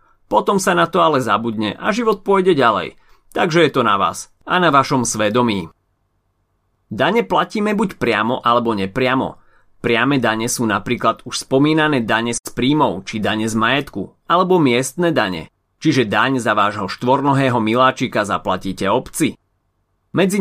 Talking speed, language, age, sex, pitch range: 145 wpm, Slovak, 30-49, male, 105-155 Hz